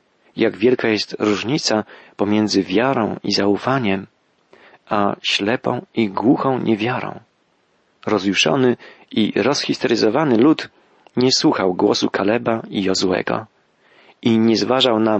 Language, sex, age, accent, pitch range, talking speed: Polish, male, 40-59, native, 105-130 Hz, 105 wpm